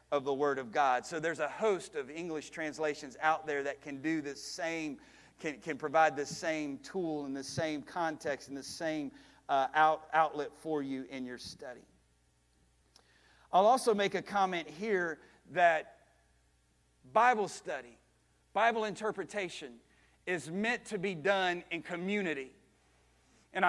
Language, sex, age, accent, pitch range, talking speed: English, male, 40-59, American, 155-210 Hz, 150 wpm